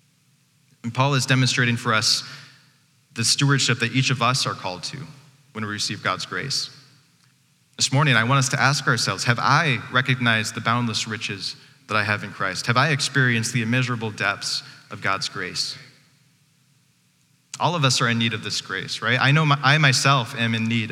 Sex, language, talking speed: male, English, 185 wpm